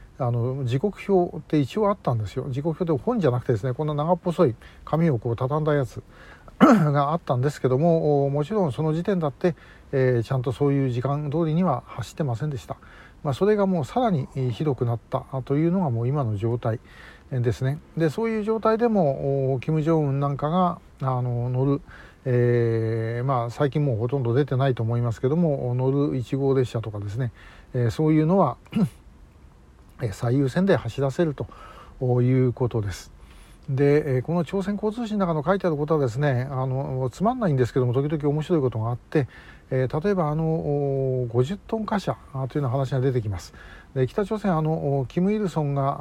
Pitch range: 125-160 Hz